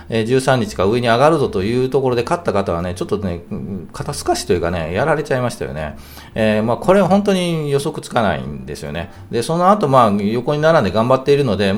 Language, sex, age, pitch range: Japanese, male, 40-59, 105-140 Hz